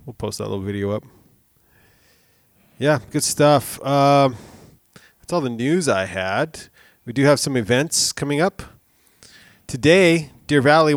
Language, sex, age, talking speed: English, male, 30-49, 140 wpm